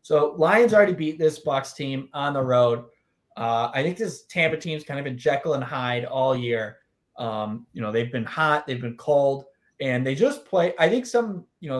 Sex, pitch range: male, 125-155 Hz